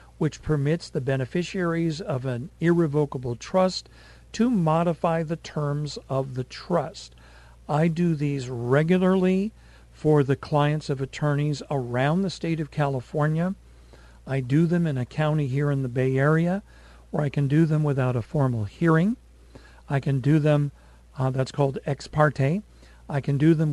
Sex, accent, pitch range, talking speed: male, American, 135-170 Hz, 155 wpm